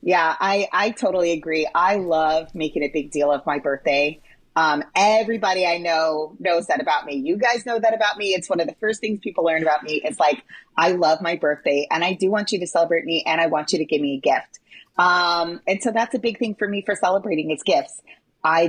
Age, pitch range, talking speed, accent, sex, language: 30-49, 165-230 Hz, 240 wpm, American, female, English